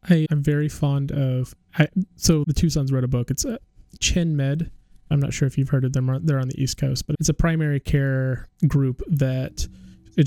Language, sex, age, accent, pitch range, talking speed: English, male, 20-39, American, 125-145 Hz, 215 wpm